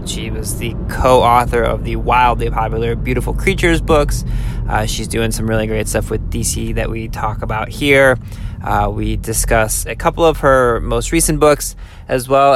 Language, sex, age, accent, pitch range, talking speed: English, male, 20-39, American, 110-125 Hz, 175 wpm